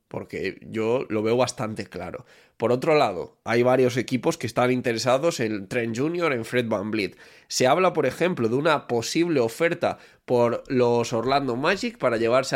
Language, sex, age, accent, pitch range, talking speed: Spanish, male, 20-39, Spanish, 115-140 Hz, 170 wpm